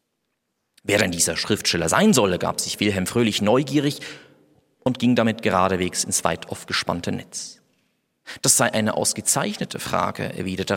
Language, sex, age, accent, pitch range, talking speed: German, male, 40-59, German, 100-155 Hz, 140 wpm